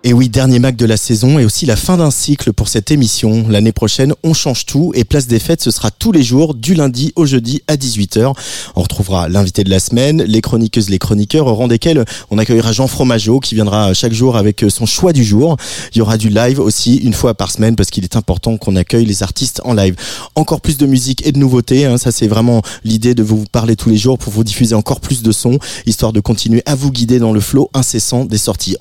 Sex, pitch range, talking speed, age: male, 105-130 Hz, 250 wpm, 30-49